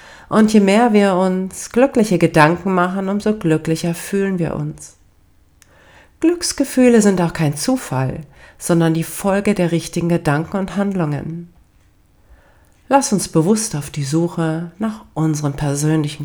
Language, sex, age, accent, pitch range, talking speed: German, female, 40-59, German, 140-175 Hz, 130 wpm